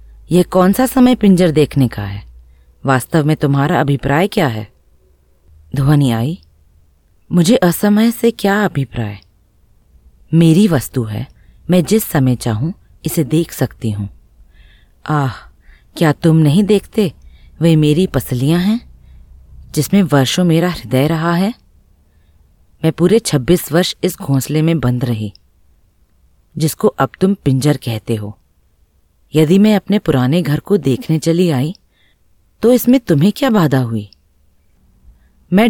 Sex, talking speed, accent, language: female, 130 wpm, native, Hindi